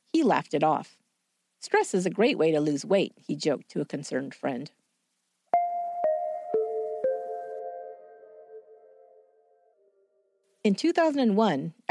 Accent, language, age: American, English, 50-69